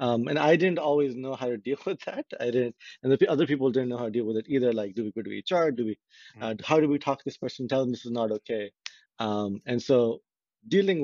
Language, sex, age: English, male, 30-49